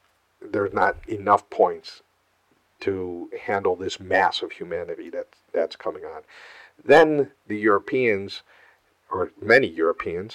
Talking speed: 110 wpm